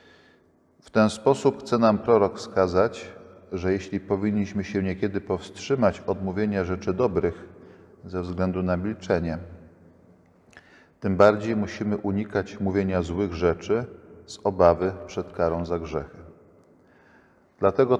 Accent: native